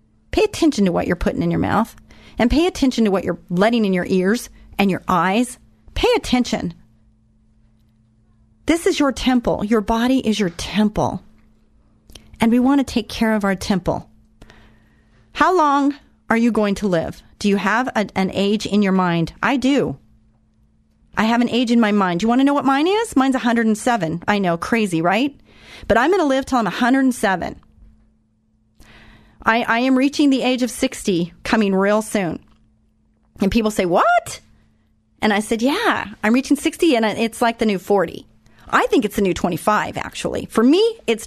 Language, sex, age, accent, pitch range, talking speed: English, female, 40-59, American, 170-255 Hz, 180 wpm